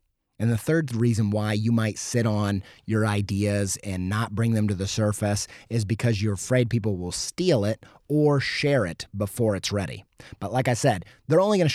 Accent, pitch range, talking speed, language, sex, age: American, 105-135 Hz, 205 wpm, English, male, 30-49